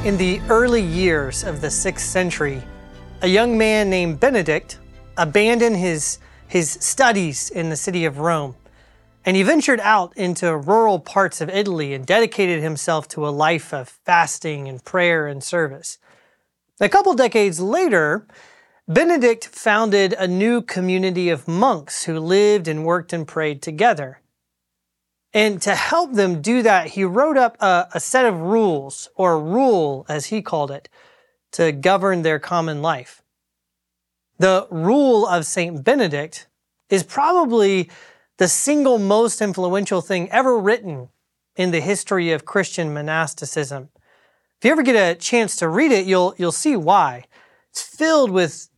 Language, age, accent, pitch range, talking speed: English, 30-49, American, 155-215 Hz, 150 wpm